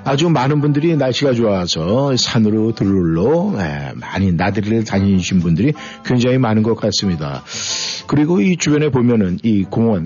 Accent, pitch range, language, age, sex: native, 105-140 Hz, Korean, 50-69, male